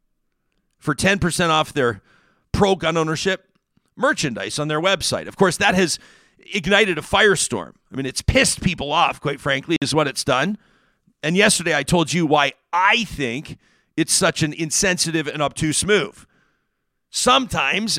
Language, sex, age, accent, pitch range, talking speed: English, male, 50-69, American, 150-195 Hz, 150 wpm